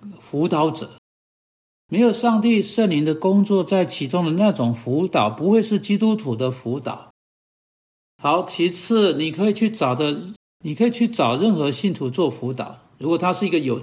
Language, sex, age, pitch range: Chinese, male, 60-79, 135-205 Hz